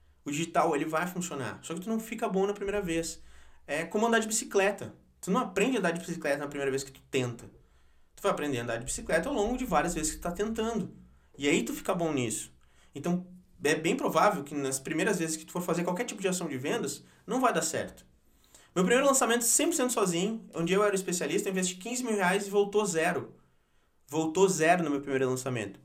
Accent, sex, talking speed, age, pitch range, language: Brazilian, male, 225 wpm, 20-39, 135-205 Hz, Portuguese